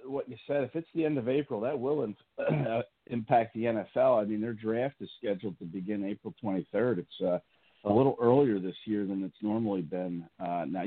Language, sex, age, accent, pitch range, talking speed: English, male, 50-69, American, 95-115 Hz, 205 wpm